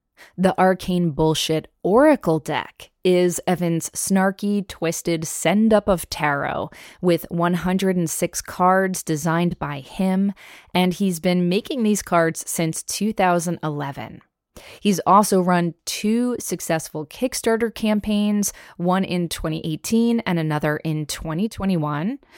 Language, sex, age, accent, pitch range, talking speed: English, female, 20-39, American, 160-205 Hz, 105 wpm